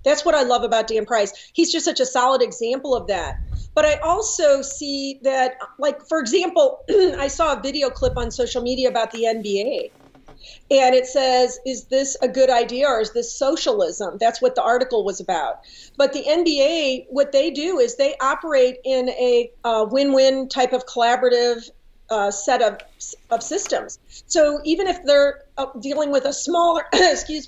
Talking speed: 180 wpm